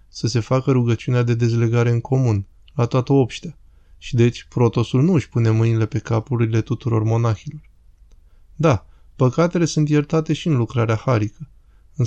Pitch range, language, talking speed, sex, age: 110-130 Hz, Romanian, 155 wpm, male, 20-39